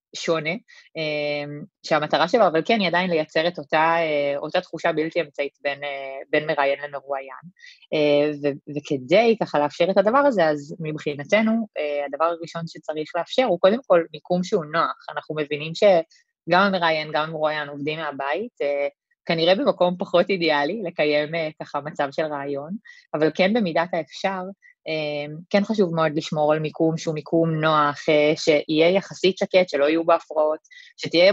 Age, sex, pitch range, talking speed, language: 20-39, female, 150-180 Hz, 140 wpm, Hebrew